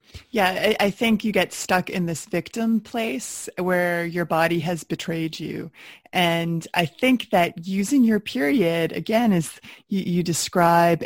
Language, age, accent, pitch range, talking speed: English, 20-39, American, 165-195 Hz, 145 wpm